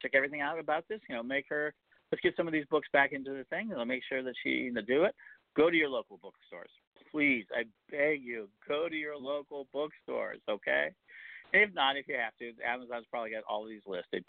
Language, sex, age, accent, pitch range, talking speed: English, male, 50-69, American, 115-160 Hz, 235 wpm